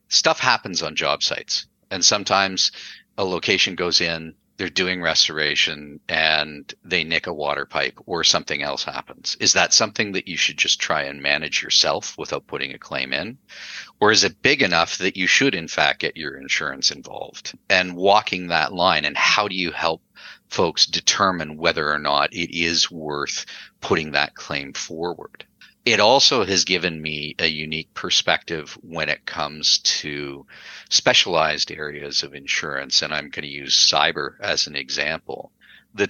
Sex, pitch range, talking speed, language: male, 75-90 Hz, 170 wpm, English